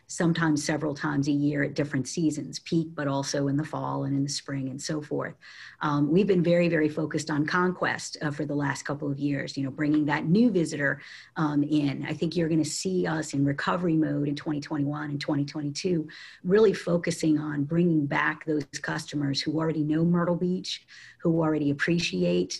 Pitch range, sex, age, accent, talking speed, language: 150-175 Hz, female, 40-59, American, 190 wpm, English